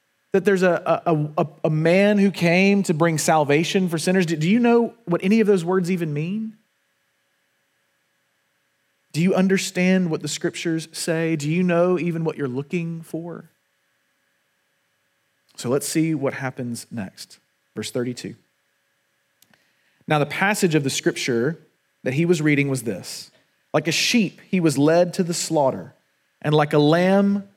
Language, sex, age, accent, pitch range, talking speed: English, male, 30-49, American, 145-180 Hz, 155 wpm